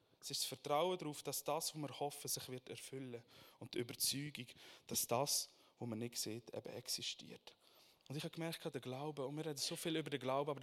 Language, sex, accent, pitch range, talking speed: German, male, Austrian, 140-180 Hz, 220 wpm